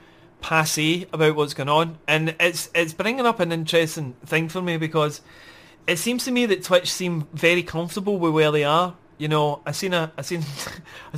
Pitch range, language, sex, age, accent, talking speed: 150-180 Hz, English, male, 30-49, British, 200 wpm